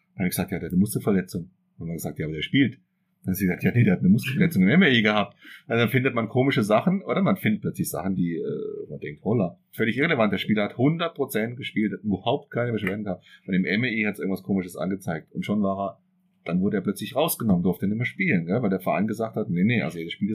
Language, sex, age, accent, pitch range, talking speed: German, male, 30-49, German, 100-140 Hz, 260 wpm